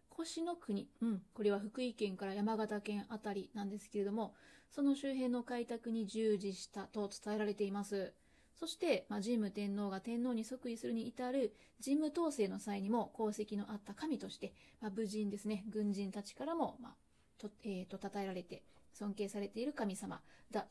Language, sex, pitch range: Japanese, female, 200-230 Hz